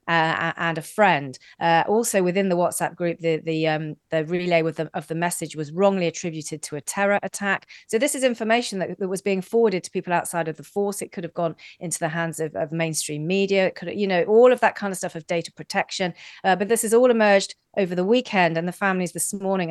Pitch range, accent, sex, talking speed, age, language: 165-195 Hz, British, female, 230 wpm, 40-59, English